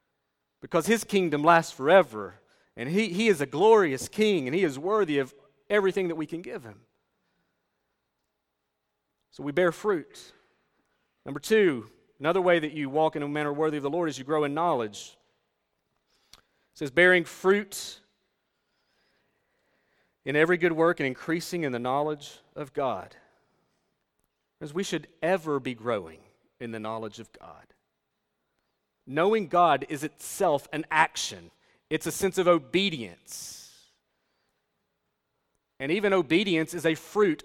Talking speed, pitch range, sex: 145 wpm, 150-195 Hz, male